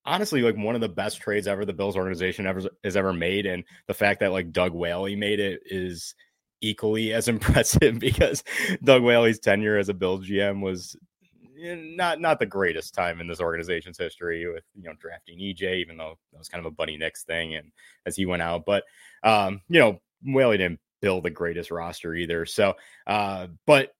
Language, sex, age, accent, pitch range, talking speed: English, male, 30-49, American, 95-110 Hz, 200 wpm